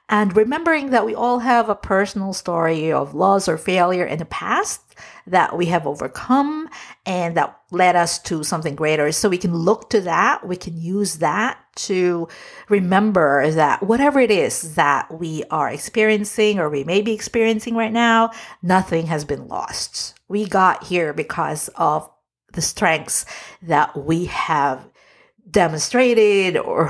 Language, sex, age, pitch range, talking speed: English, female, 50-69, 155-230 Hz, 155 wpm